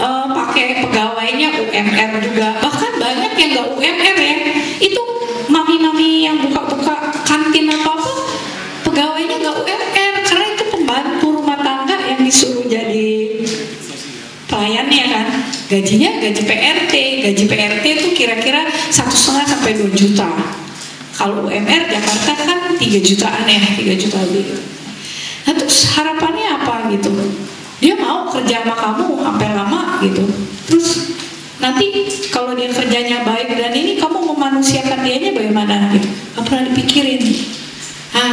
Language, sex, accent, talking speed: Indonesian, female, native, 125 wpm